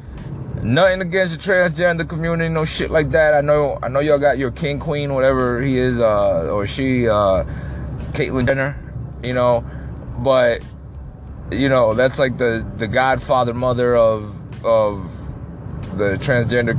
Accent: American